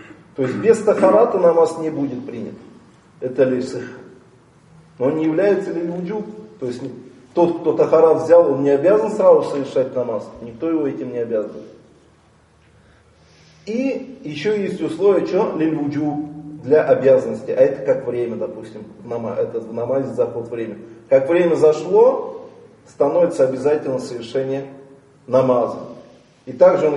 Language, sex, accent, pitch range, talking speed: Russian, male, native, 135-210 Hz, 135 wpm